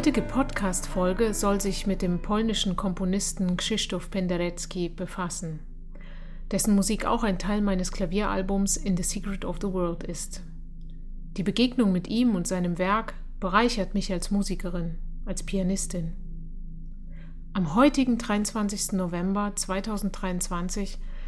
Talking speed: 125 wpm